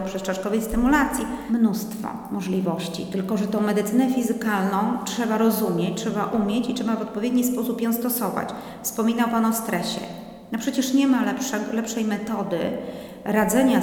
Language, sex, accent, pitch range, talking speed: Polish, female, native, 210-260 Hz, 140 wpm